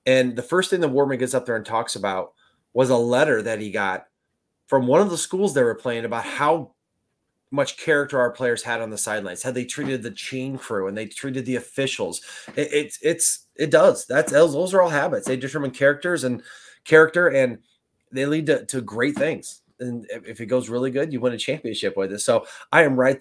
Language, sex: English, male